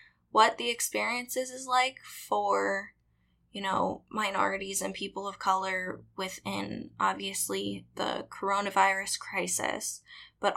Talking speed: 110 wpm